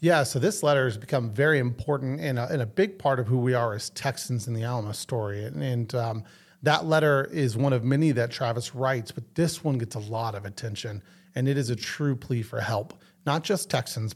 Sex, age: male, 30-49